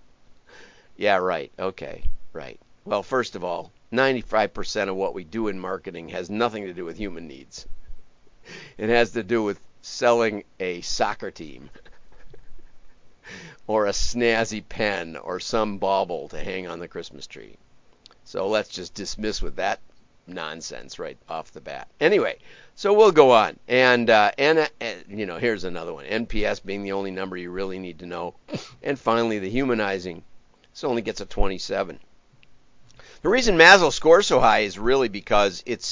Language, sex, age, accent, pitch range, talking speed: English, male, 50-69, American, 95-120 Hz, 165 wpm